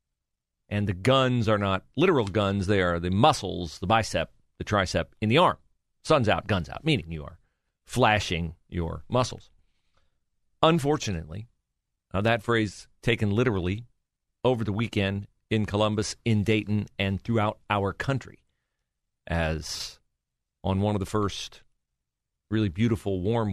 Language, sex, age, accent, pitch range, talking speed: English, male, 40-59, American, 85-115 Hz, 135 wpm